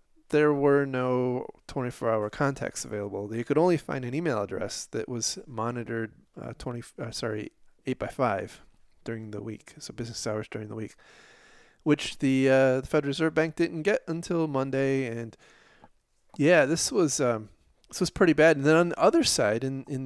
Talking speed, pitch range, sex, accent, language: 180 wpm, 115-145 Hz, male, American, English